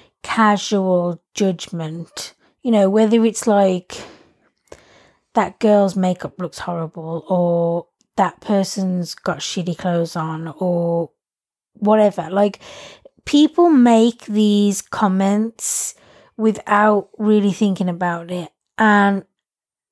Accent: British